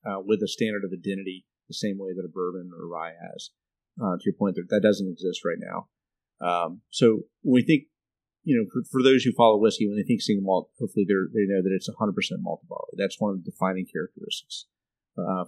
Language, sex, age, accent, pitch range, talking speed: English, male, 30-49, American, 95-115 Hz, 235 wpm